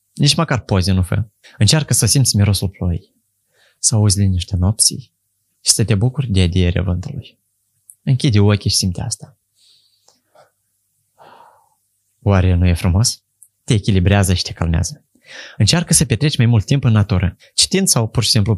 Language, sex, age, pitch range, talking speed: Romanian, male, 20-39, 100-125 Hz, 160 wpm